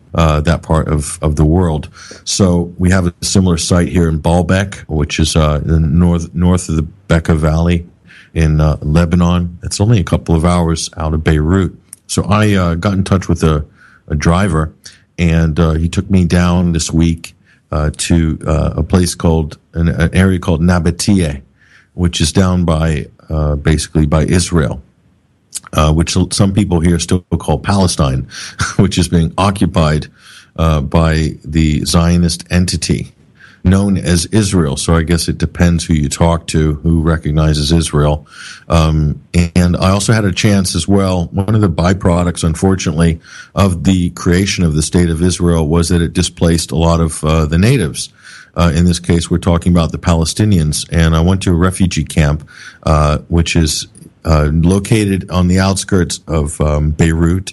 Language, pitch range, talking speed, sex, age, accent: English, 80-90 Hz, 175 wpm, male, 50-69, American